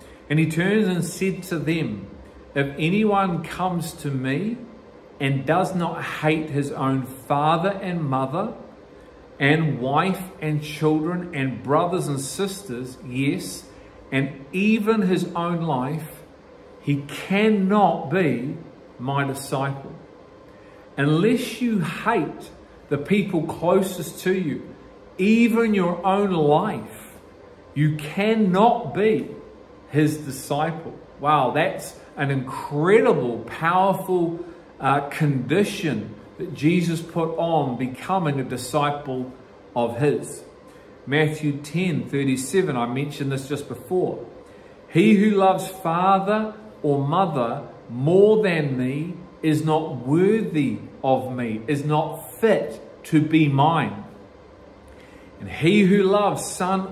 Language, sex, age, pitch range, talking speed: English, male, 40-59, 140-185 Hz, 110 wpm